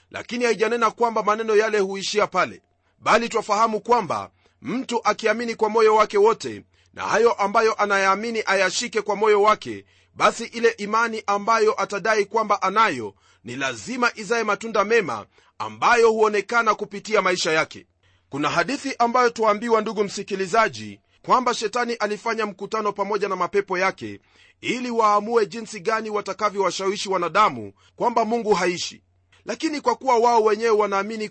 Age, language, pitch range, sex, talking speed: 40-59, Swahili, 200-230 Hz, male, 135 wpm